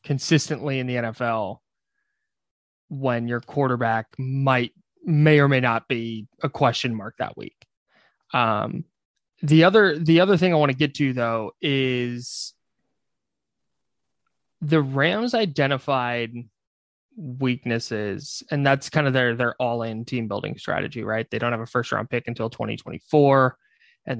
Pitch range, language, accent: 120-140 Hz, English, American